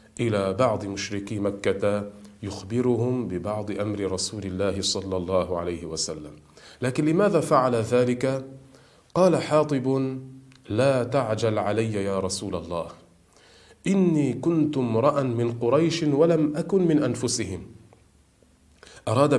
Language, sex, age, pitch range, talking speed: Arabic, male, 40-59, 105-130 Hz, 110 wpm